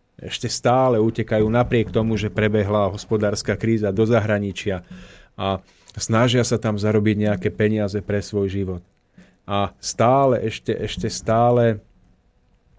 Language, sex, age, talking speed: Slovak, male, 30-49, 120 wpm